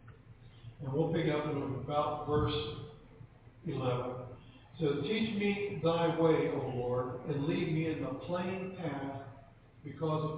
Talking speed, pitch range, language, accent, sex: 140 wpm, 125-165 Hz, English, American, male